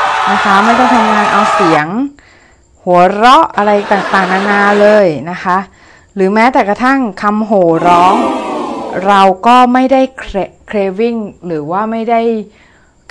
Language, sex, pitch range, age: Thai, female, 170-220 Hz, 20-39